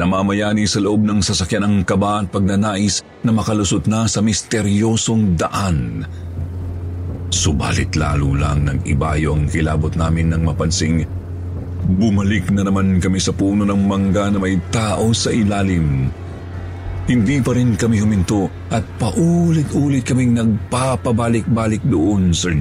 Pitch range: 85-105 Hz